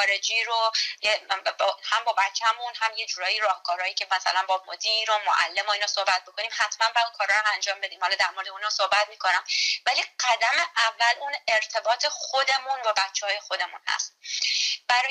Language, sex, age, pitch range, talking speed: Persian, female, 20-39, 205-275 Hz, 185 wpm